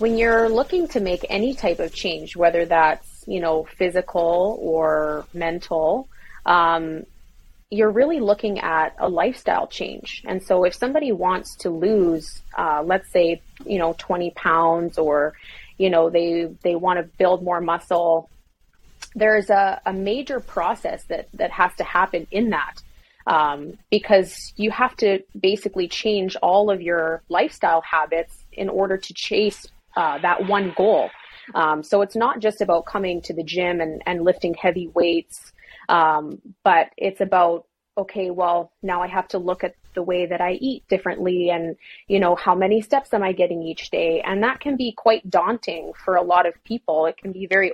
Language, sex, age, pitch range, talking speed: English, female, 20-39, 170-205 Hz, 175 wpm